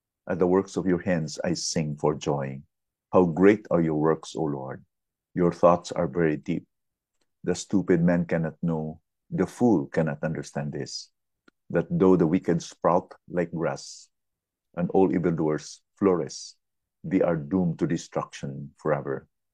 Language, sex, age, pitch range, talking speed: English, male, 50-69, 80-95 Hz, 150 wpm